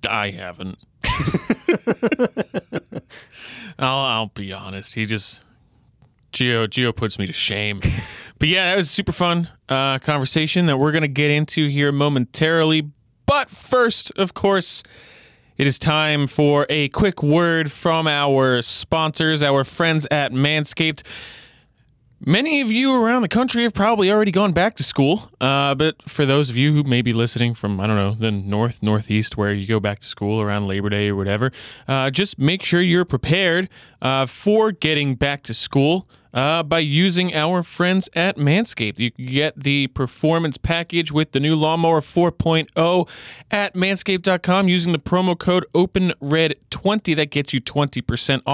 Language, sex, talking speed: English, male, 160 wpm